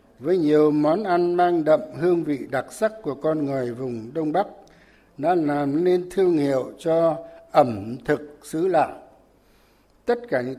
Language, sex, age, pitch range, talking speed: Vietnamese, male, 60-79, 135-180 Hz, 165 wpm